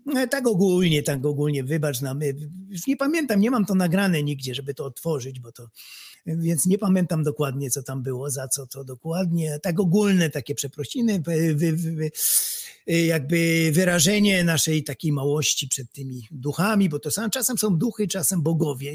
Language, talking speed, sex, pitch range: Polish, 155 wpm, male, 145-195 Hz